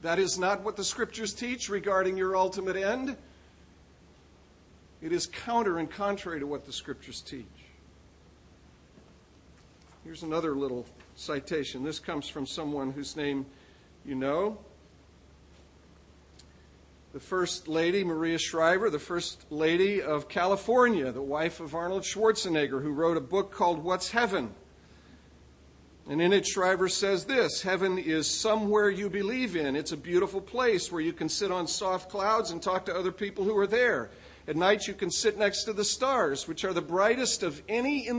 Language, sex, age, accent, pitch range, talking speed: English, male, 50-69, American, 140-205 Hz, 160 wpm